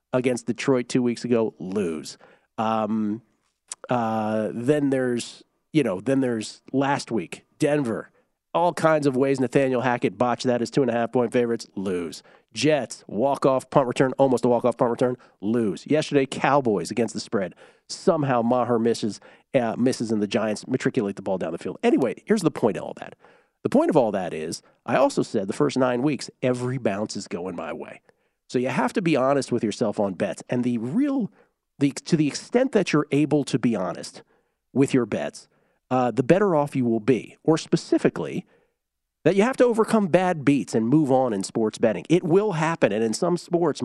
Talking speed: 190 wpm